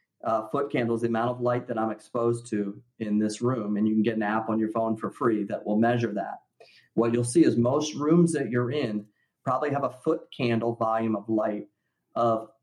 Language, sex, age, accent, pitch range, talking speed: English, male, 40-59, American, 110-150 Hz, 225 wpm